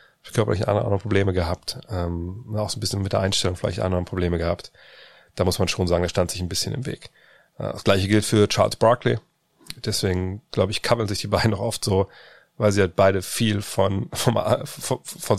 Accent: German